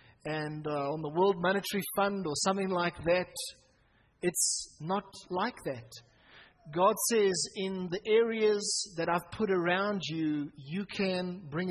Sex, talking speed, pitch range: male, 145 wpm, 160-215 Hz